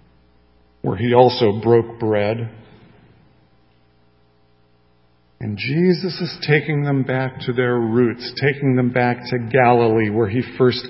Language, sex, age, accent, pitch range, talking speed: English, male, 50-69, American, 115-150 Hz, 120 wpm